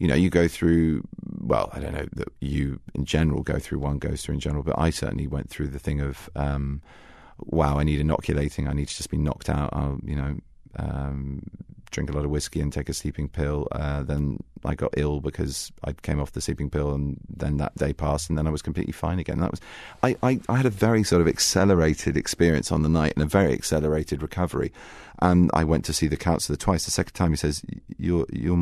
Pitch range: 70-85 Hz